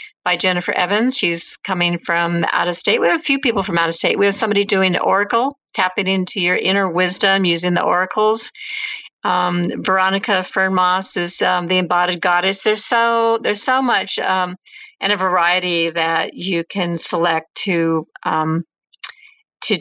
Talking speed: 170 wpm